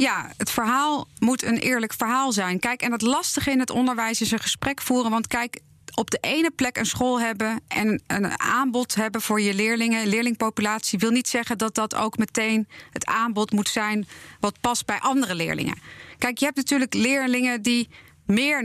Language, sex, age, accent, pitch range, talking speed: English, female, 30-49, Dutch, 220-265 Hz, 190 wpm